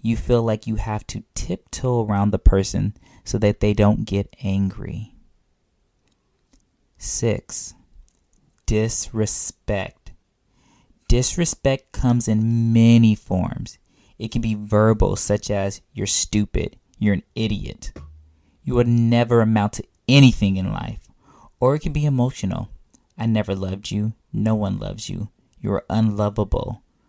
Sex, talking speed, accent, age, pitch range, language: male, 125 wpm, American, 20-39, 100-120 Hz, English